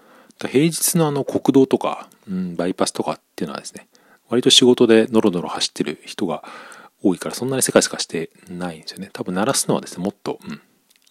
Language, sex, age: Japanese, male, 40-59